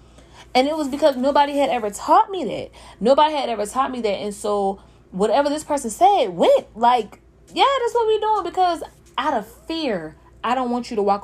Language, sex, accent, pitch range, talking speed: English, female, American, 190-260 Hz, 210 wpm